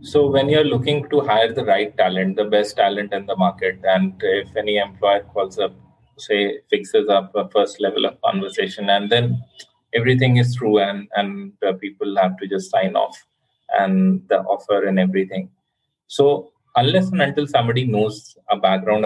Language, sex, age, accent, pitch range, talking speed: English, male, 20-39, Indian, 105-140 Hz, 175 wpm